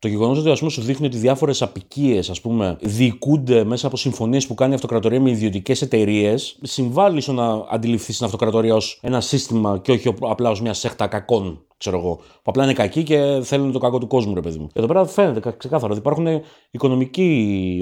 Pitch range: 105-145 Hz